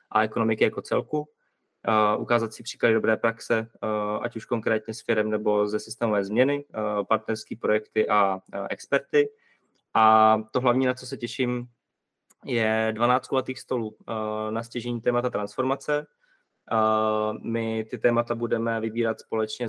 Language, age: Czech, 20-39